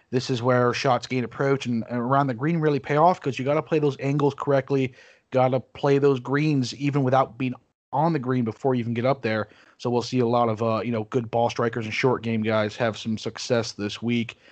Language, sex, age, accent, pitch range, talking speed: English, male, 30-49, American, 125-155 Hz, 245 wpm